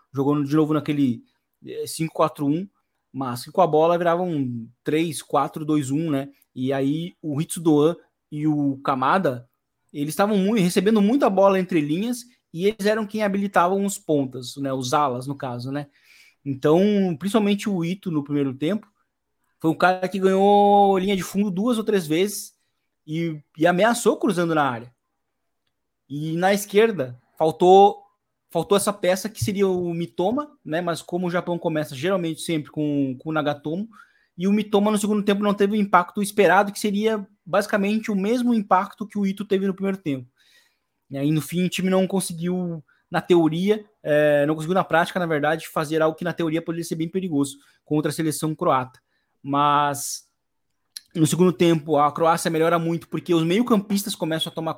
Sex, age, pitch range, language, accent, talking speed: male, 20-39, 150-200 Hz, Portuguese, Brazilian, 170 wpm